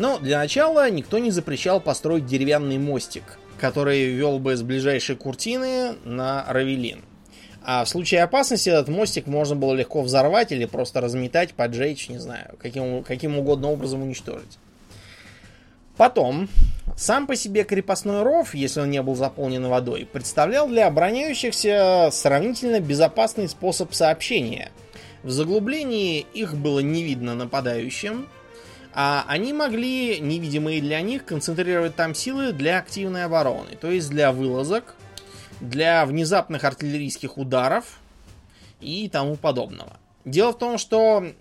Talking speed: 130 wpm